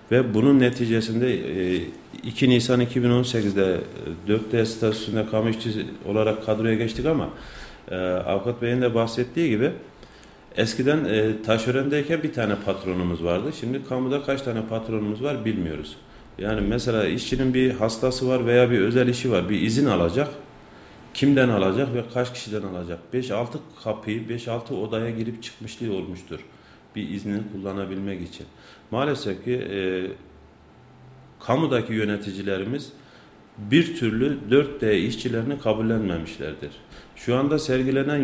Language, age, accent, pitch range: Turkish, 40-59, native, 100-125 Hz